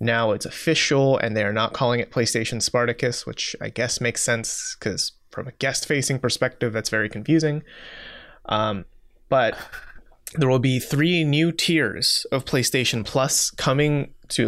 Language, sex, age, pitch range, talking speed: English, male, 20-39, 115-150 Hz, 150 wpm